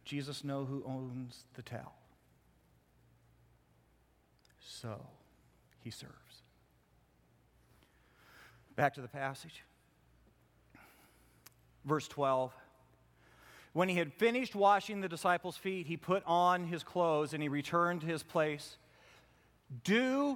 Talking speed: 105 wpm